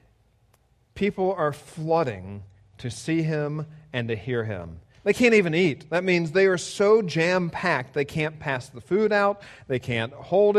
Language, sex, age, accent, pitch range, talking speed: English, male, 40-59, American, 115-165 Hz, 170 wpm